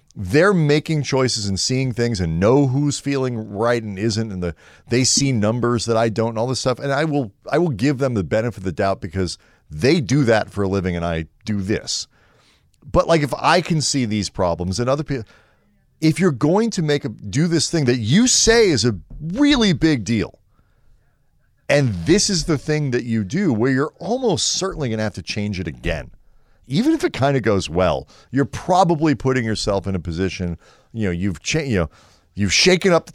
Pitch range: 105-150 Hz